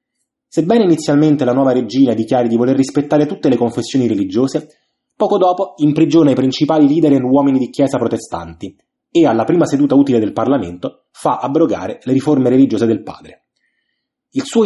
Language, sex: Italian, male